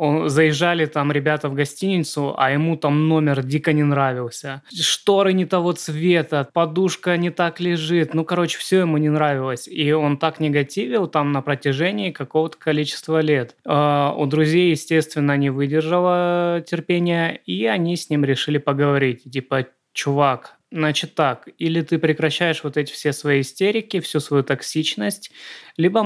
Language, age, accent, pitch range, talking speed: Russian, 20-39, native, 145-170 Hz, 145 wpm